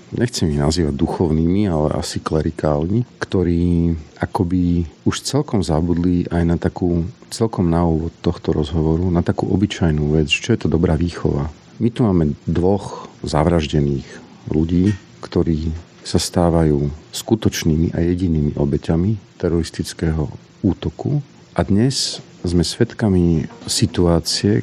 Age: 50-69